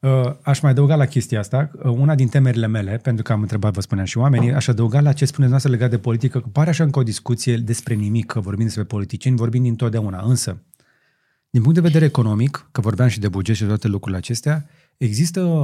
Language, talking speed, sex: Romanian, 225 wpm, male